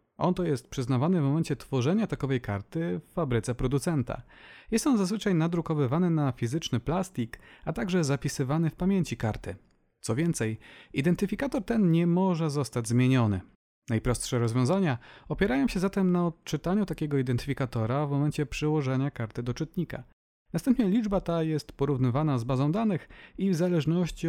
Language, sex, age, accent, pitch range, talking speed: Polish, male, 30-49, native, 125-180 Hz, 145 wpm